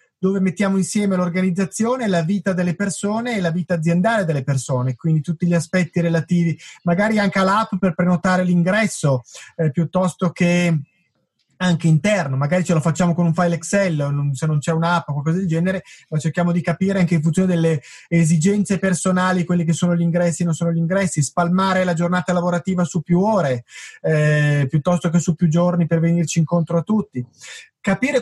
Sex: male